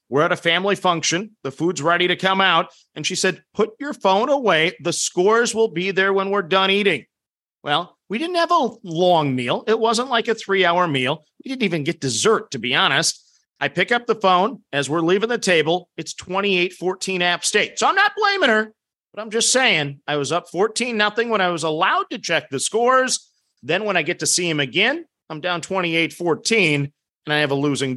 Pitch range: 155-220 Hz